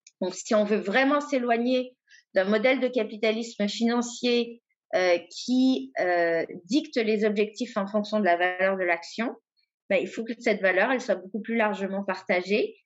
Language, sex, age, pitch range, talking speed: French, female, 50-69, 190-240 Hz, 170 wpm